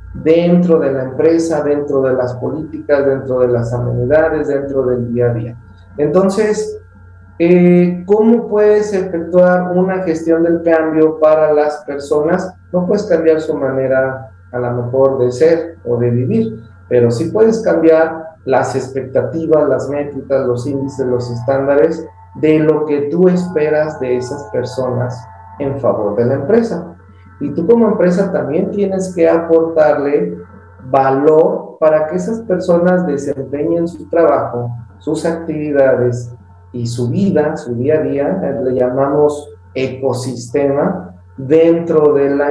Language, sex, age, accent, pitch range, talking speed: Spanish, male, 40-59, Mexican, 125-170 Hz, 140 wpm